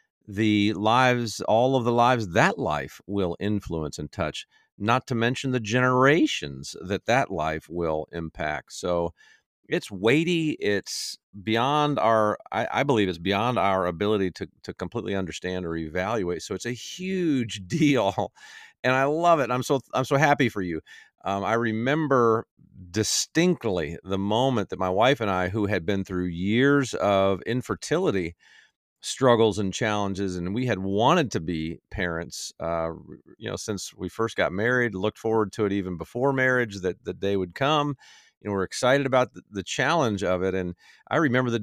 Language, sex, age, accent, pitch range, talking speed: English, male, 50-69, American, 90-125 Hz, 170 wpm